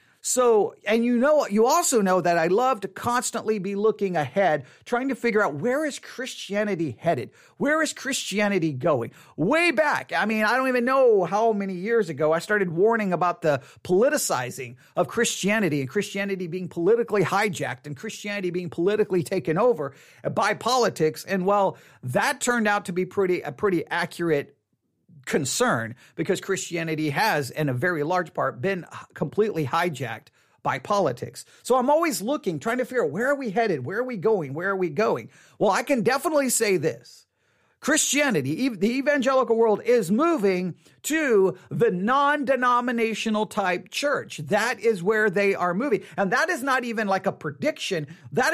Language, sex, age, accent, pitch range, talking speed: English, male, 40-59, American, 180-245 Hz, 170 wpm